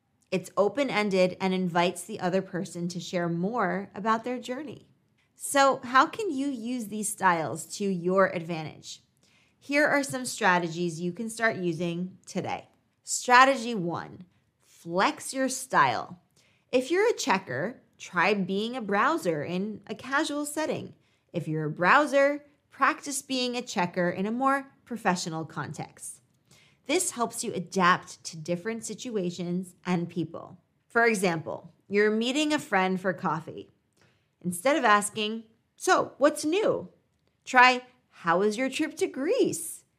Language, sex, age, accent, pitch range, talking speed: English, female, 20-39, American, 175-250 Hz, 140 wpm